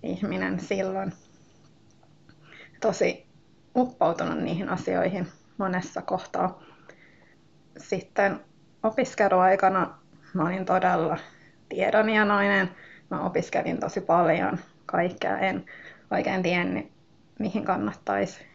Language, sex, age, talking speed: Finnish, female, 20-39, 75 wpm